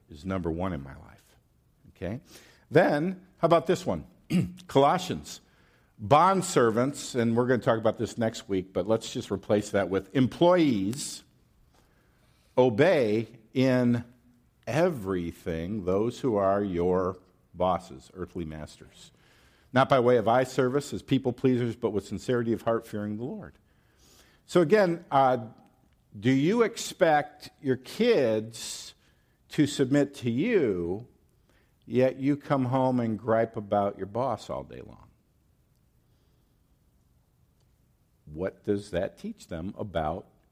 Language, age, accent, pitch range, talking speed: English, 50-69, American, 105-145 Hz, 130 wpm